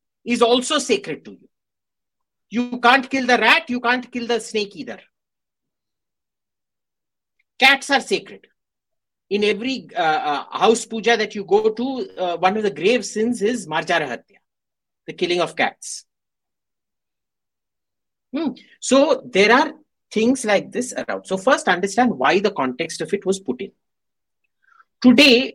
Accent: Indian